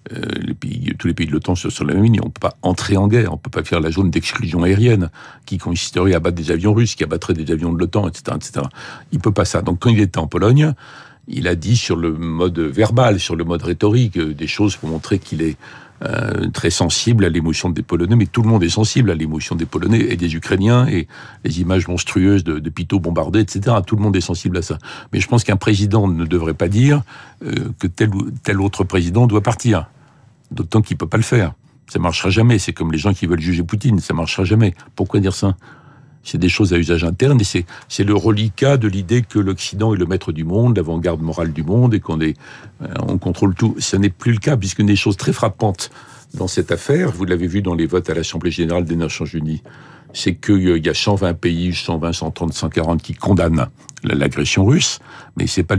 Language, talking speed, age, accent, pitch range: French, 240 wpm, 50-69, French, 85-110 Hz